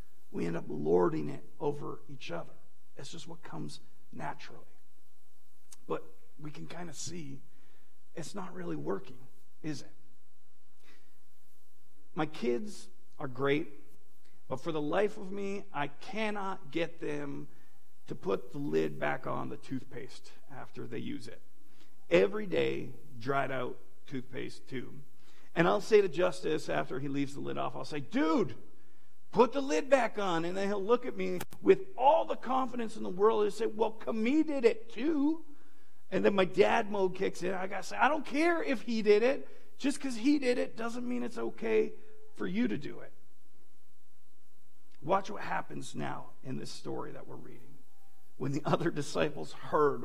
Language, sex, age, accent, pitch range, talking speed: English, male, 40-59, American, 145-225 Hz, 170 wpm